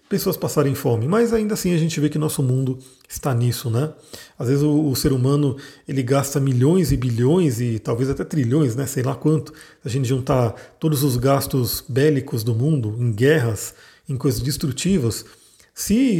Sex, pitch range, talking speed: male, 135-165 Hz, 185 wpm